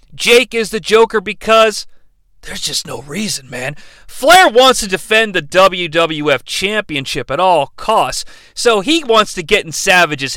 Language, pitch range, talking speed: English, 170-255 Hz, 155 wpm